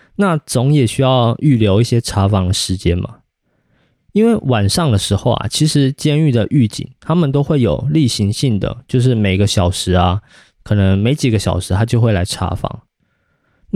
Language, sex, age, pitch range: Chinese, male, 20-39, 100-135 Hz